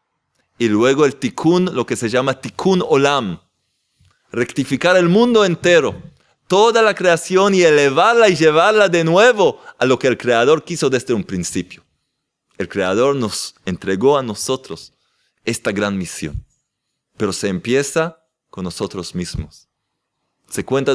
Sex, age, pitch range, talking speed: male, 30-49, 130-200 Hz, 140 wpm